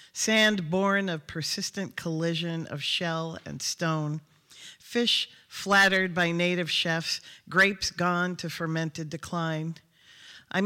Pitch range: 155-185 Hz